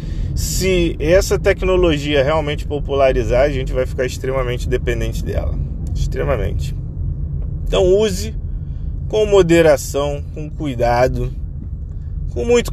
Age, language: 20-39, Portuguese